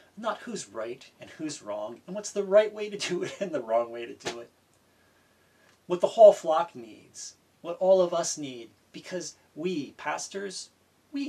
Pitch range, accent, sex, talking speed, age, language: 120-190 Hz, American, male, 185 wpm, 40-59, English